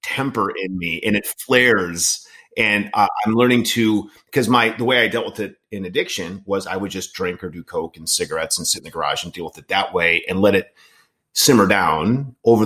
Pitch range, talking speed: 95-115 Hz, 230 wpm